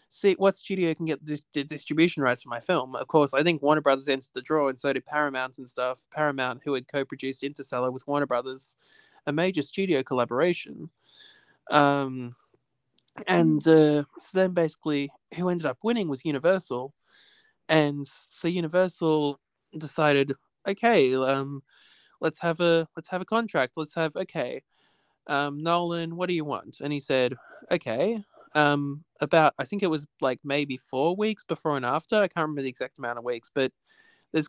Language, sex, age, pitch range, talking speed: English, male, 20-39, 140-185 Hz, 175 wpm